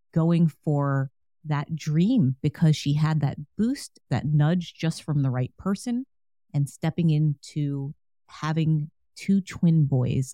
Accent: American